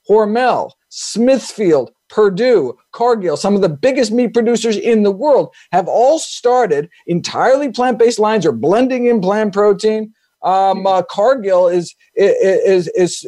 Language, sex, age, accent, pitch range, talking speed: English, male, 50-69, American, 190-260 Hz, 135 wpm